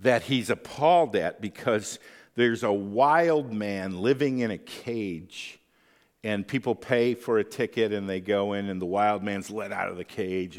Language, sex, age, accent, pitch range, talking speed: English, male, 50-69, American, 100-125 Hz, 180 wpm